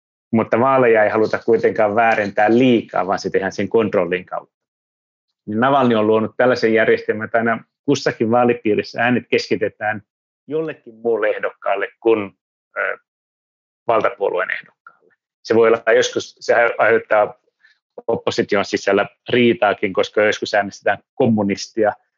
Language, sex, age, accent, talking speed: Finnish, male, 30-49, native, 115 wpm